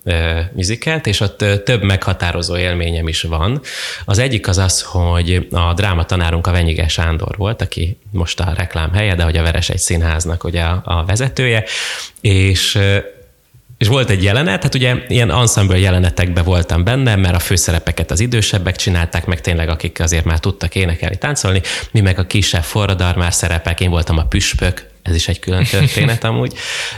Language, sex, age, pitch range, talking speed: Hungarian, male, 20-39, 85-105 Hz, 170 wpm